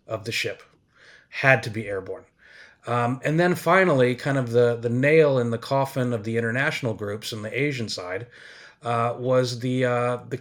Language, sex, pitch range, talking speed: English, male, 120-135 Hz, 185 wpm